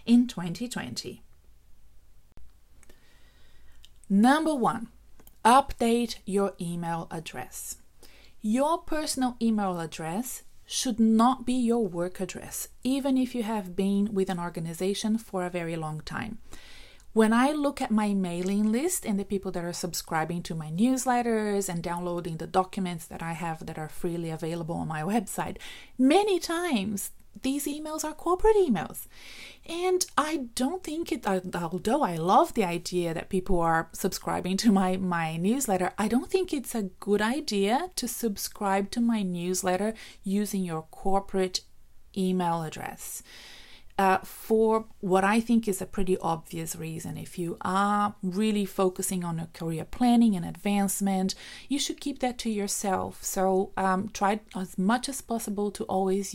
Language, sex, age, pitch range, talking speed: English, female, 30-49, 180-235 Hz, 150 wpm